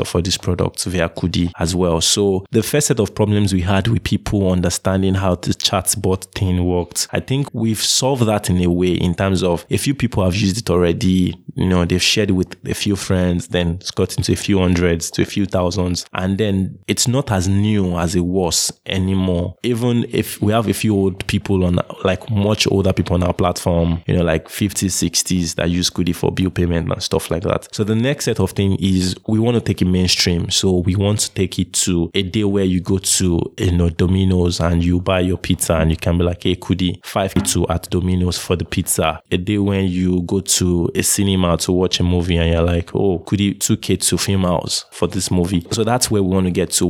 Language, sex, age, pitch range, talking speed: English, male, 20-39, 90-100 Hz, 235 wpm